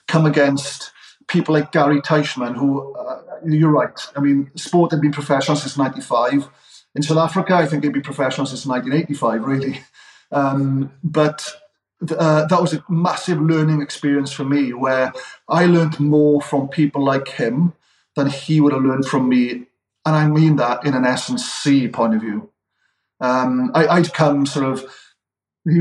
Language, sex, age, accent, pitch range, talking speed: English, male, 40-59, British, 135-160 Hz, 170 wpm